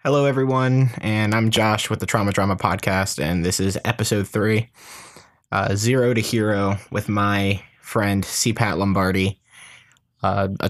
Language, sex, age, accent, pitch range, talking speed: English, male, 20-39, American, 100-120 Hz, 150 wpm